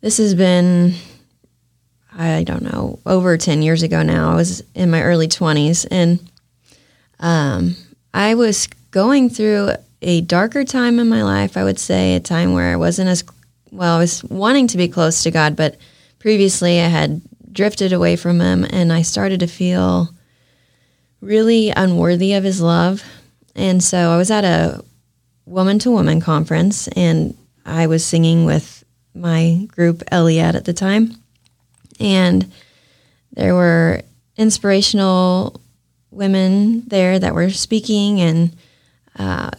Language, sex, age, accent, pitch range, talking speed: English, female, 20-39, American, 160-205 Hz, 145 wpm